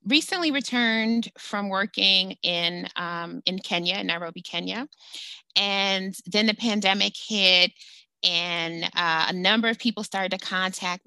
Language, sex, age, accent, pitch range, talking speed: English, female, 30-49, American, 160-195 Hz, 130 wpm